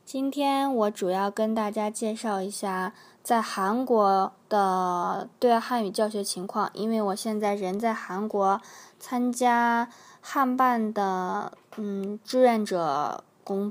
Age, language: 20-39, Chinese